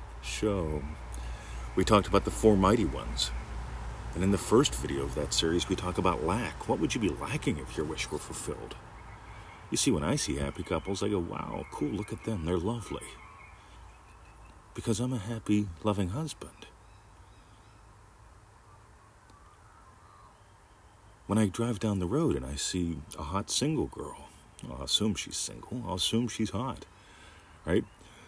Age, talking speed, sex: 40-59, 155 wpm, male